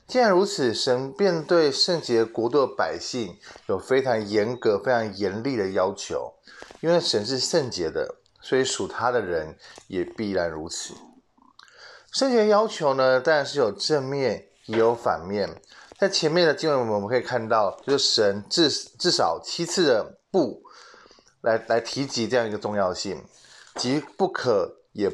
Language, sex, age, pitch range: Chinese, male, 20-39, 115-185 Hz